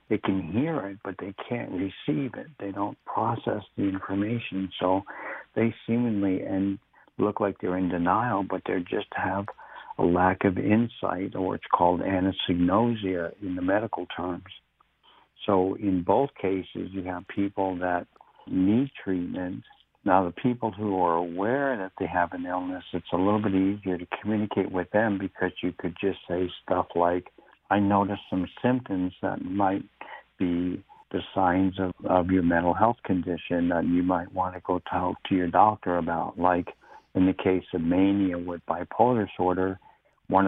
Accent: American